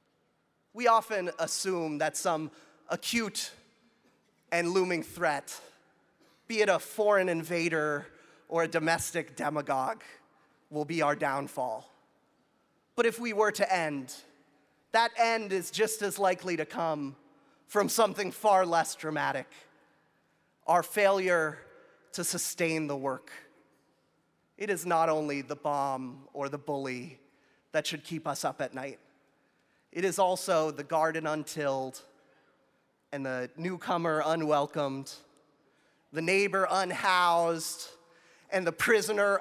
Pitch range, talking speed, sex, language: 155-220 Hz, 120 wpm, male, English